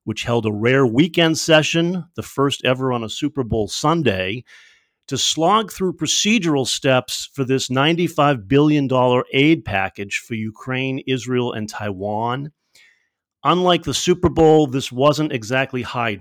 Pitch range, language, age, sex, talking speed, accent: 115-155 Hz, English, 40-59, male, 140 wpm, American